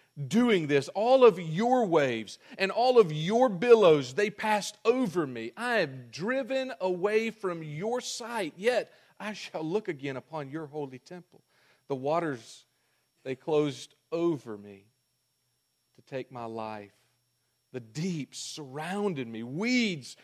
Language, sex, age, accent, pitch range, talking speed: English, male, 40-59, American, 130-190 Hz, 135 wpm